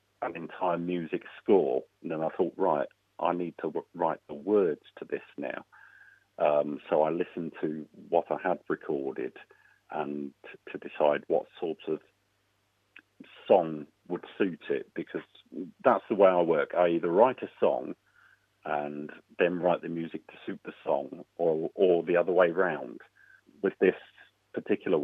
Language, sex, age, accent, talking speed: English, male, 40-59, British, 165 wpm